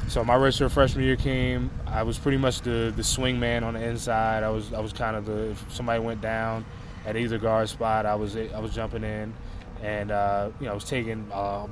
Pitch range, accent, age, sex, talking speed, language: 105-120 Hz, American, 20-39, male, 235 wpm, English